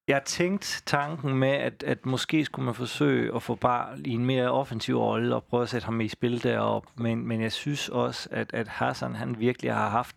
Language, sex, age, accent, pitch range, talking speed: Danish, male, 30-49, native, 110-130 Hz, 225 wpm